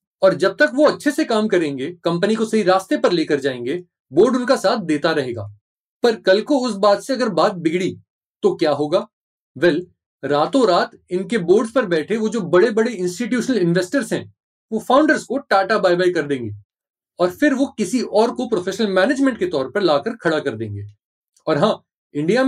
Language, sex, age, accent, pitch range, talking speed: Hindi, male, 30-49, native, 165-245 Hz, 190 wpm